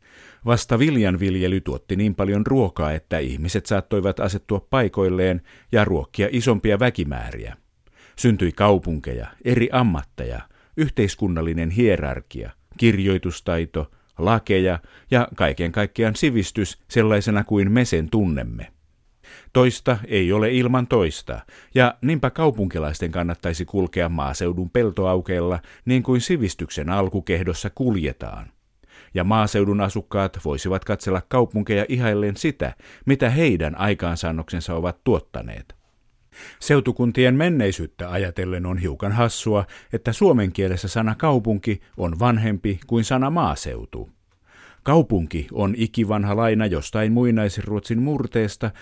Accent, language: native, Finnish